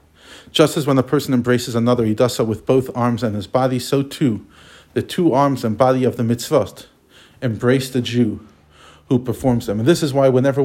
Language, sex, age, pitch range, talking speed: English, male, 50-69, 115-140 Hz, 210 wpm